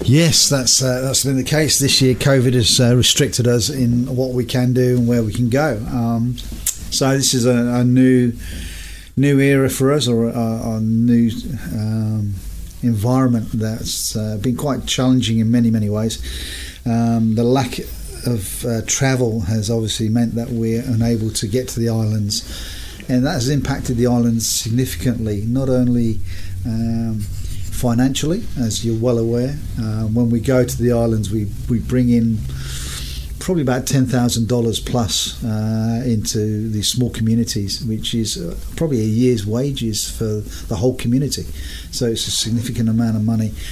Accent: British